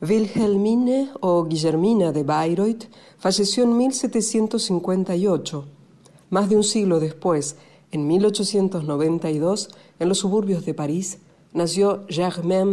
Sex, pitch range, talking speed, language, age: female, 160-205 Hz, 105 wpm, Spanish, 50-69